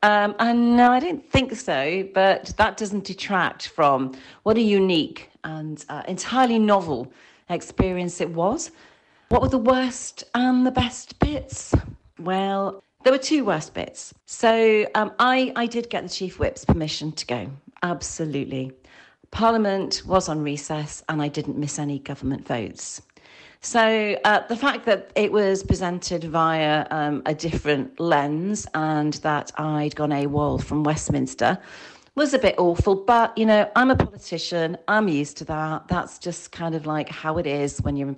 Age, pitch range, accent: 40-59, 155-215 Hz, British